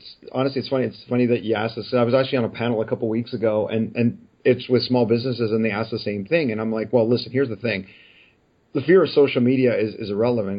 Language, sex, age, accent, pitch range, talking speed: English, male, 40-59, American, 115-135 Hz, 265 wpm